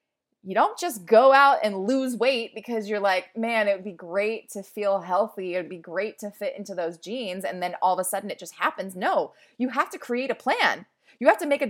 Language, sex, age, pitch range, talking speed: English, female, 20-39, 195-275 Hz, 250 wpm